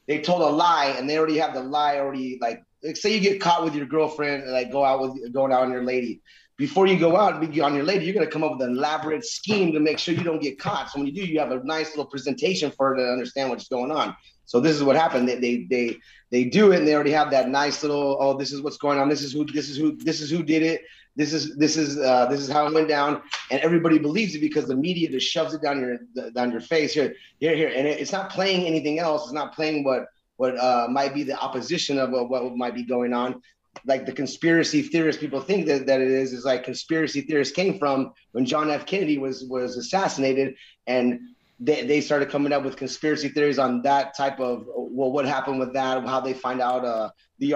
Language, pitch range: English, 130-155 Hz